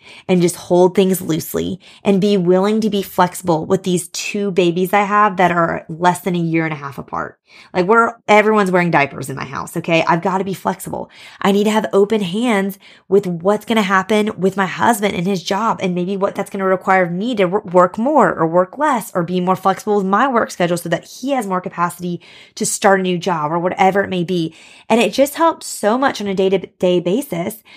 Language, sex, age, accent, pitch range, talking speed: English, female, 20-39, American, 180-210 Hz, 225 wpm